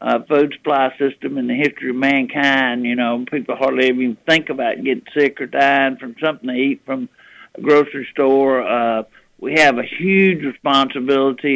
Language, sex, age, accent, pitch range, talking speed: English, male, 60-79, American, 130-145 Hz, 175 wpm